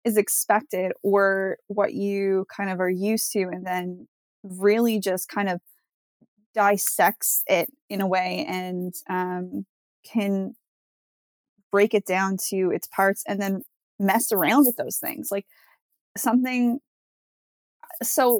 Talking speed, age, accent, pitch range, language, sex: 130 wpm, 20-39, American, 190-225 Hz, English, female